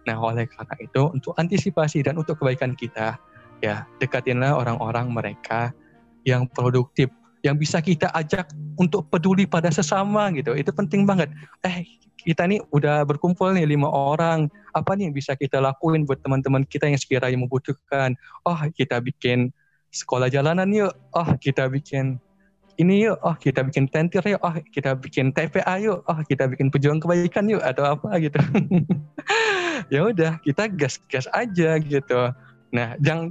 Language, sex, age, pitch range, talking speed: Indonesian, male, 20-39, 130-175 Hz, 155 wpm